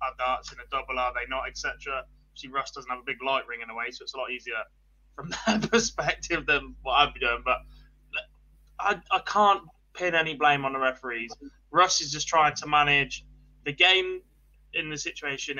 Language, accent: English, British